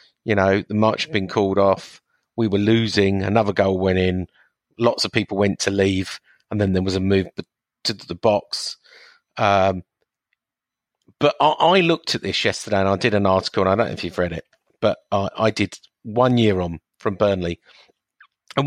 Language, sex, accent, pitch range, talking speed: English, male, British, 95-115 Hz, 195 wpm